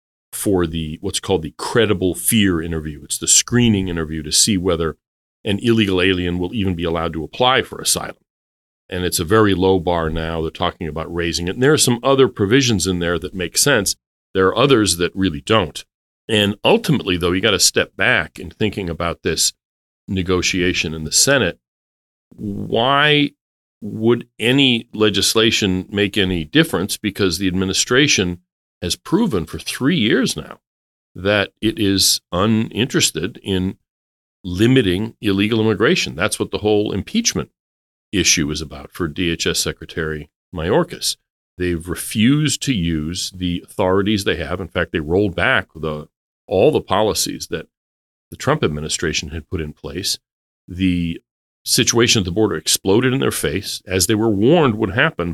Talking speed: 160 wpm